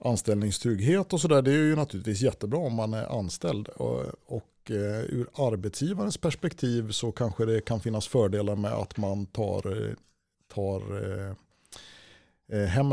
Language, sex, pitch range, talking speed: Swedish, male, 100-120 Hz, 130 wpm